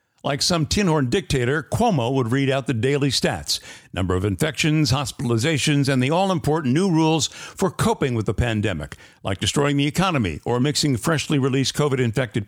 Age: 60-79